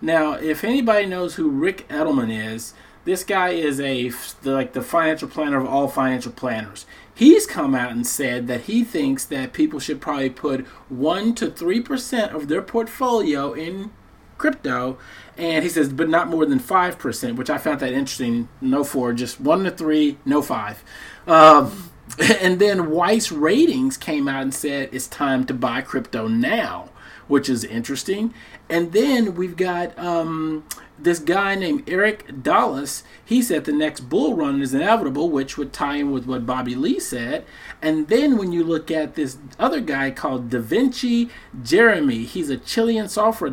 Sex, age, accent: male, 30-49, American